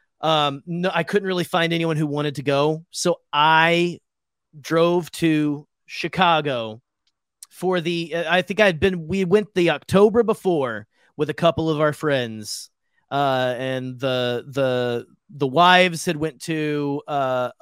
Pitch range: 125-165 Hz